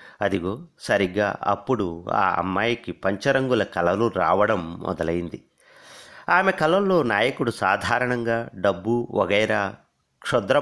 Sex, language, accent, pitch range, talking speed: male, Telugu, native, 90-120 Hz, 90 wpm